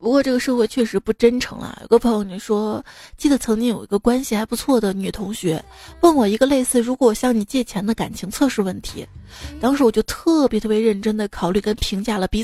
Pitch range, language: 200-255 Hz, Chinese